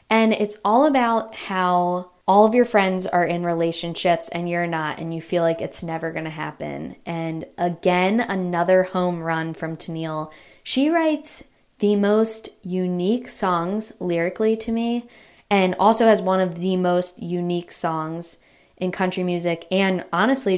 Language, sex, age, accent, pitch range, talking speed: English, female, 10-29, American, 170-210 Hz, 155 wpm